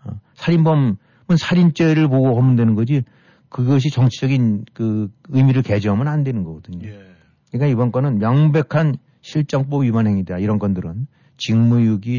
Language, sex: Korean, male